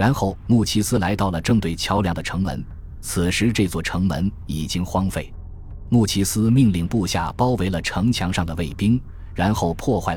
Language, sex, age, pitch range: Chinese, male, 20-39, 85-110 Hz